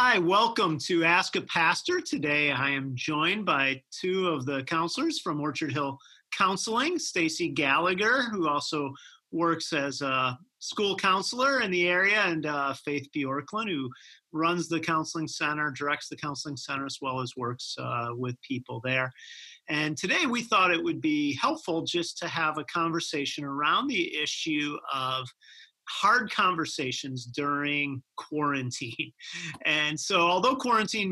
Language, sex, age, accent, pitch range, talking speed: English, male, 40-59, American, 140-170 Hz, 150 wpm